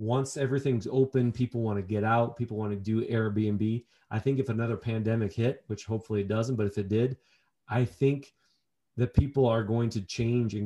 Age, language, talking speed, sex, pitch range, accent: 30-49, English, 205 wpm, male, 110-130 Hz, American